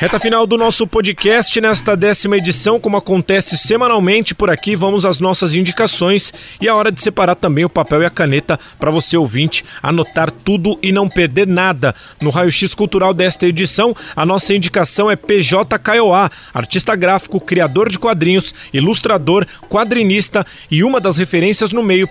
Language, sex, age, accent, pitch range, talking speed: Portuguese, male, 40-59, Brazilian, 170-210 Hz, 170 wpm